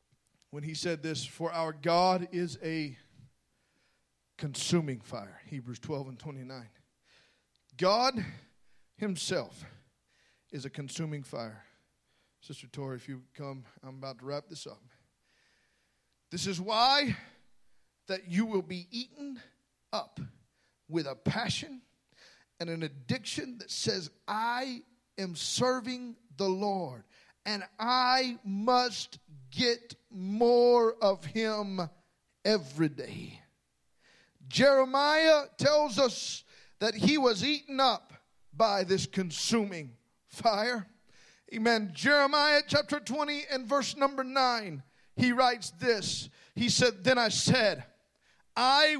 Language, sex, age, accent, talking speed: English, male, 40-59, American, 115 wpm